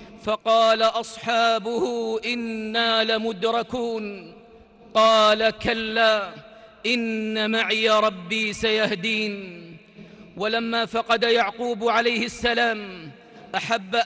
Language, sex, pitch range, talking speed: Arabic, male, 205-230 Hz, 70 wpm